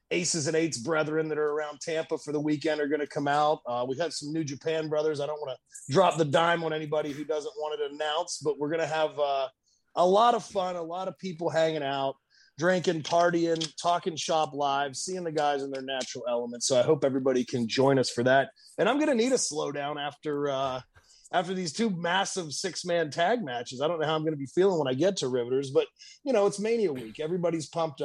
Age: 30-49